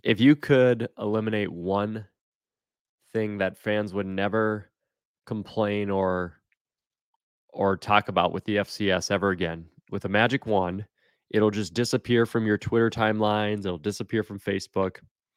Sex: male